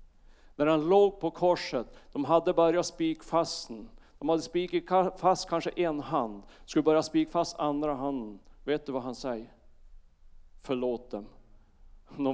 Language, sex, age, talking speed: Swedish, male, 40-59, 145 wpm